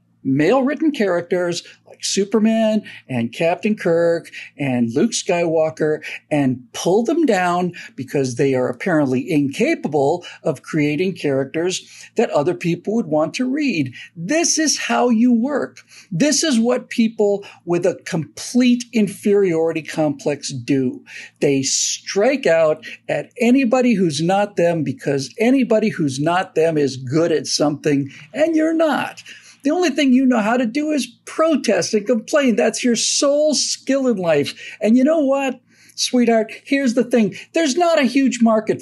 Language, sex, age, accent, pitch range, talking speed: English, male, 50-69, American, 160-250 Hz, 150 wpm